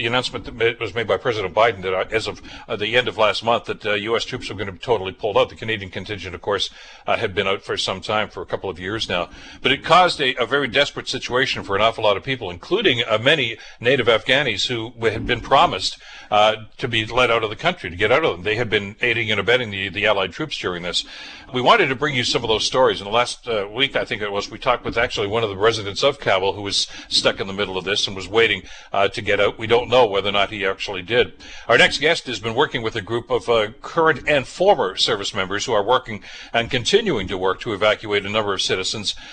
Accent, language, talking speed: American, English, 265 wpm